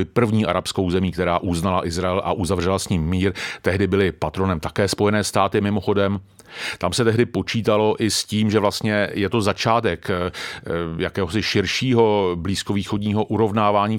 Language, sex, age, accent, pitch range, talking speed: Czech, male, 40-59, native, 95-115 Hz, 145 wpm